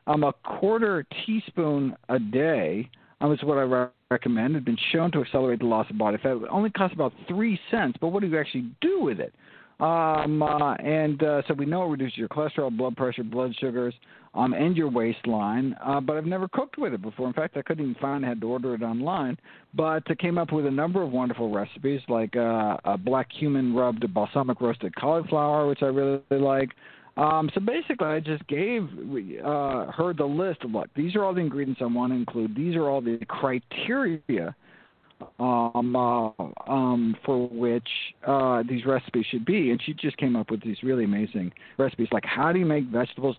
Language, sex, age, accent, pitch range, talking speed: English, male, 50-69, American, 125-160 Hz, 200 wpm